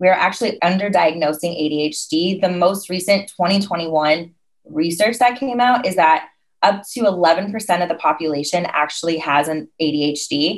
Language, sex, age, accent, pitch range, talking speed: English, female, 20-39, American, 165-220 Hz, 135 wpm